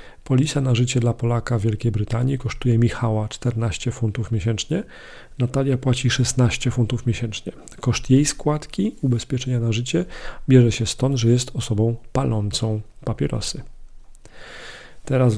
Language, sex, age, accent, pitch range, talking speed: Polish, male, 40-59, native, 115-130 Hz, 130 wpm